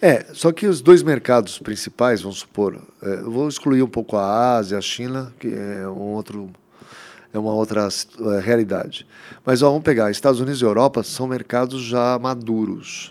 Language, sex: Portuguese, male